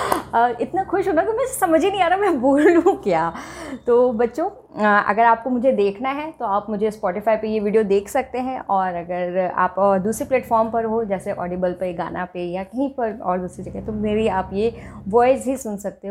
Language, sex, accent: Hindi, female, native